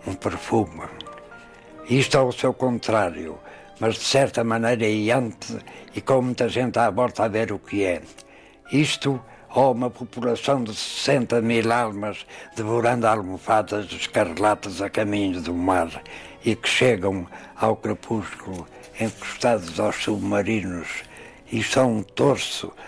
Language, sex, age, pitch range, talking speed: Portuguese, male, 60-79, 105-130 Hz, 135 wpm